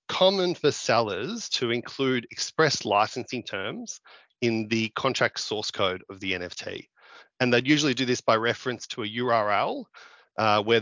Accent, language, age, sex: Australian, English, 30-49, male